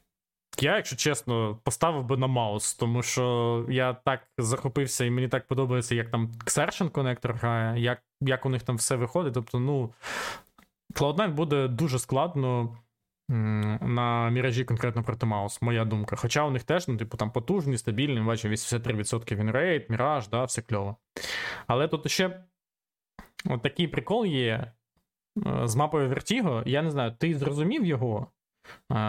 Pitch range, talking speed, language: 120-150 Hz, 155 wpm, Ukrainian